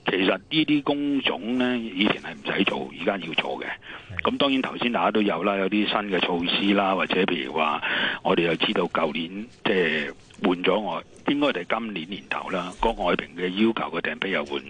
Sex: male